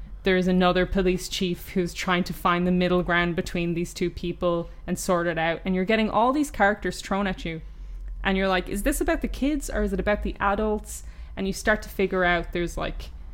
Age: 20-39